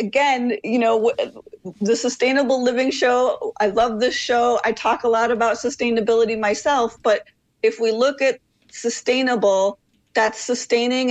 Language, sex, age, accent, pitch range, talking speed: English, female, 40-59, American, 205-240 Hz, 140 wpm